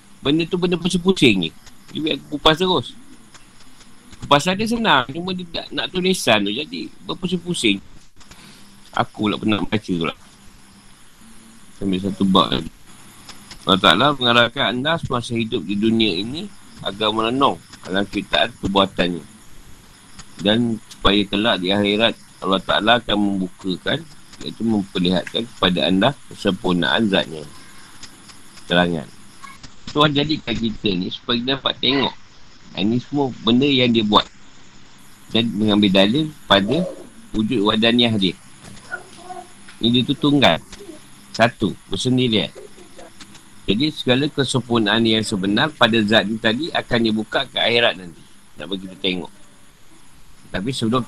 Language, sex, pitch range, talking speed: Malay, male, 100-135 Hz, 125 wpm